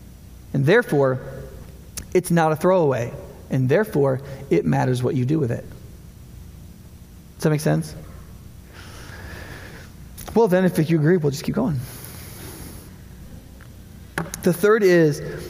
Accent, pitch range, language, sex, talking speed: American, 135-180 Hz, English, male, 120 wpm